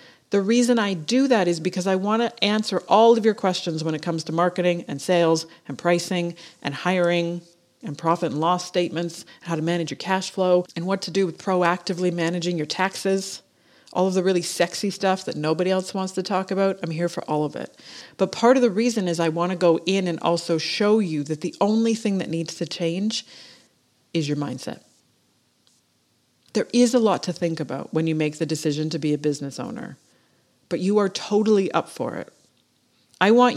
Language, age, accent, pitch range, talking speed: English, 40-59, American, 165-205 Hz, 210 wpm